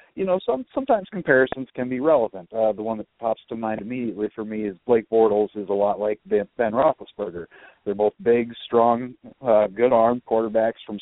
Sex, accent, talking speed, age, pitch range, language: male, American, 195 wpm, 40-59, 110-140 Hz, English